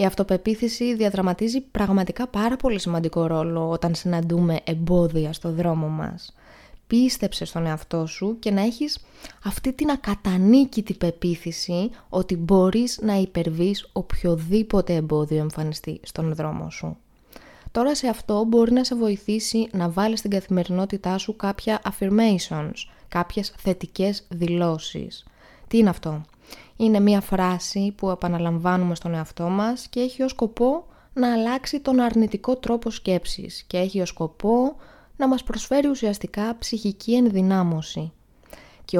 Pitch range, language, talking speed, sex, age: 170-225 Hz, Greek, 130 wpm, female, 20-39